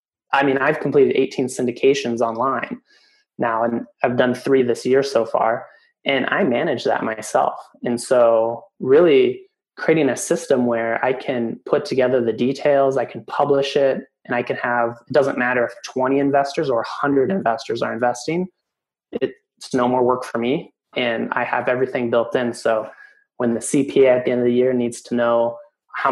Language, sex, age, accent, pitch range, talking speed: English, male, 20-39, American, 120-140 Hz, 180 wpm